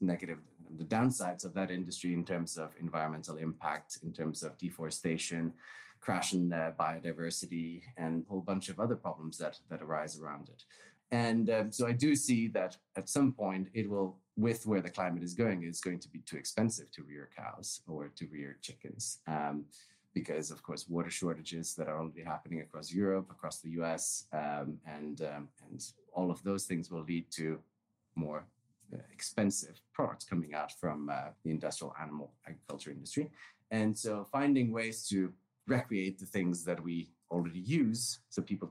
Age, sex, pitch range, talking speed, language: 30-49, male, 80-100 Hz, 175 wpm, English